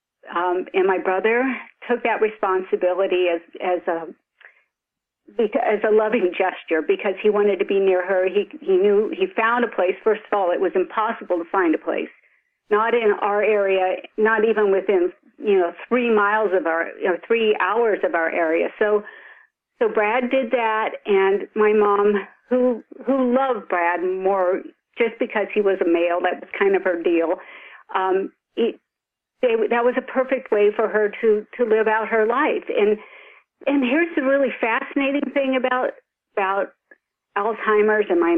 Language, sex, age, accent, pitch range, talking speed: English, female, 50-69, American, 195-260 Hz, 175 wpm